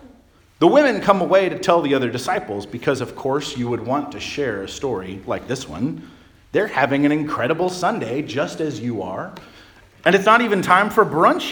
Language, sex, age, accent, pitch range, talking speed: English, male, 40-59, American, 130-180 Hz, 200 wpm